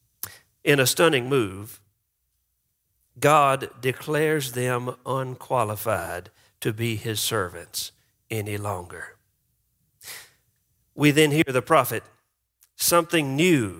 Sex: male